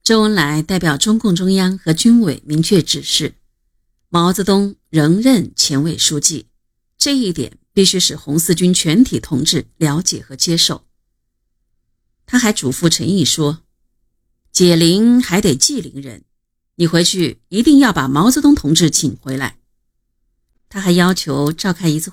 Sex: female